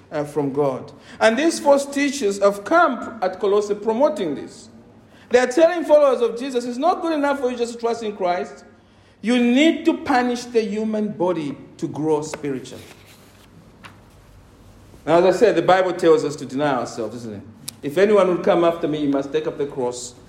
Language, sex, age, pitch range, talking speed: English, male, 50-69, 130-215 Hz, 190 wpm